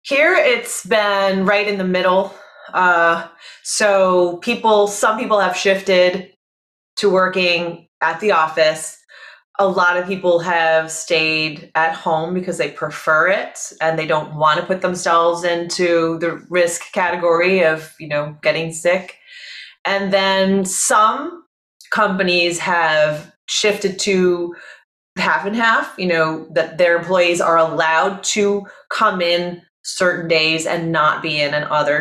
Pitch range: 165-200 Hz